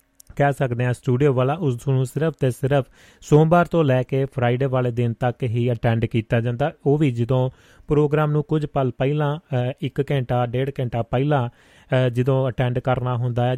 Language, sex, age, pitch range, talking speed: Punjabi, male, 30-49, 120-145 Hz, 170 wpm